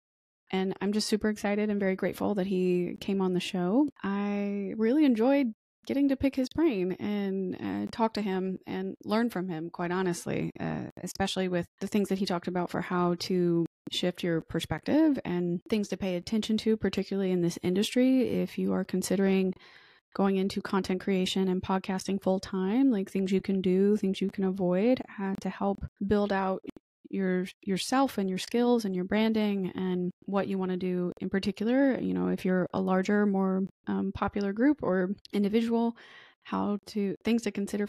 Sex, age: female, 20-39